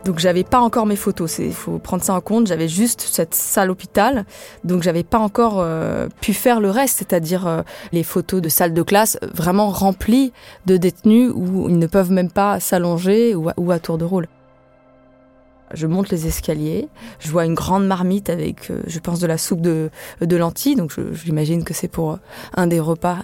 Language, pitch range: French, 160-195 Hz